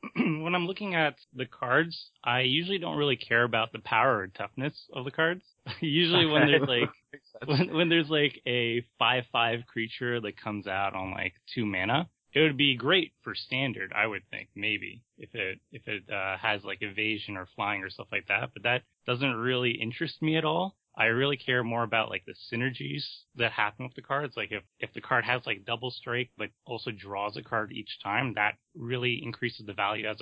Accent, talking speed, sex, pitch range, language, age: American, 205 wpm, male, 110-140 Hz, English, 20-39